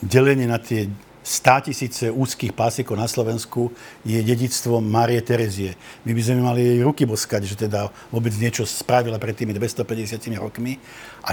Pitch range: 120-160 Hz